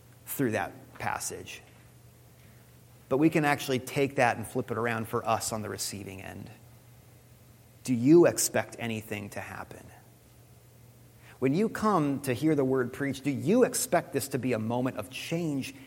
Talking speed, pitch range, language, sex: 165 wpm, 115-135 Hz, English, male